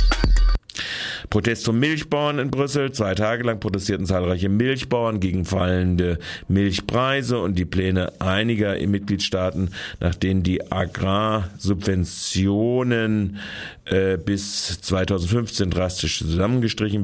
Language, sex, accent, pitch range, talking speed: German, male, German, 90-100 Hz, 100 wpm